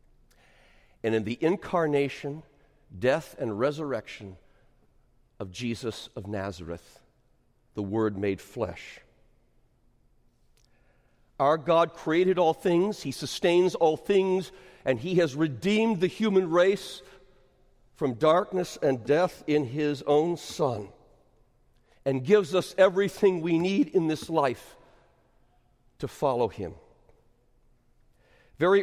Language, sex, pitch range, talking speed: English, male, 130-190 Hz, 110 wpm